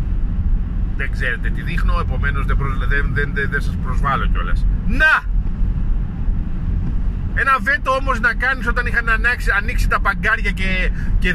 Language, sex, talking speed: Greek, male, 150 wpm